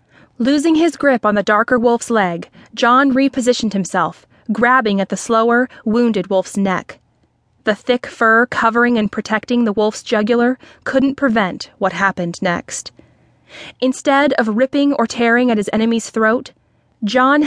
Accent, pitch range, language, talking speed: American, 200-255 Hz, English, 145 wpm